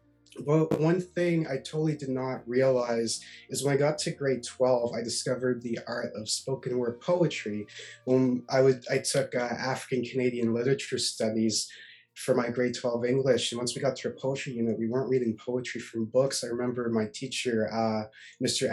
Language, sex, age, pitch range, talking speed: English, male, 20-39, 120-135 Hz, 190 wpm